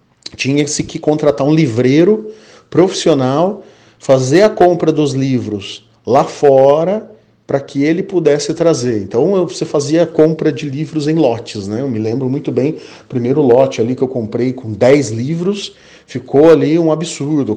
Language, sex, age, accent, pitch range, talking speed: Portuguese, male, 40-59, Brazilian, 125-165 Hz, 155 wpm